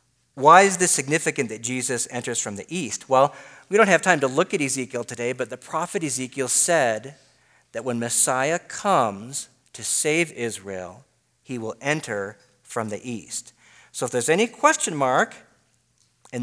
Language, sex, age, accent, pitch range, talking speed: English, male, 40-59, American, 110-145 Hz, 165 wpm